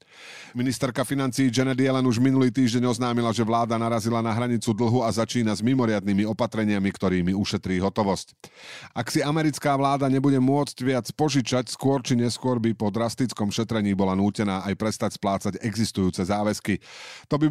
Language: Slovak